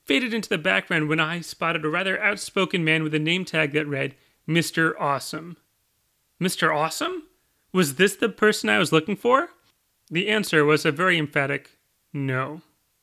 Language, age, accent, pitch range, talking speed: English, 30-49, American, 155-195 Hz, 165 wpm